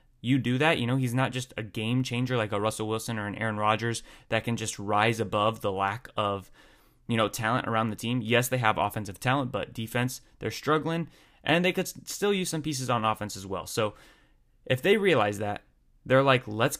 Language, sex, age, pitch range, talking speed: English, male, 20-39, 110-140 Hz, 220 wpm